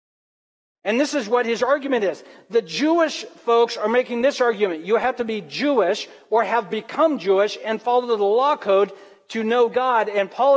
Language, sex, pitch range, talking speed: English, male, 200-260 Hz, 185 wpm